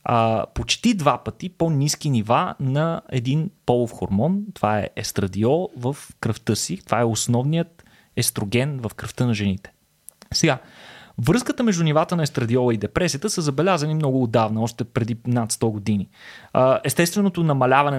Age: 20-39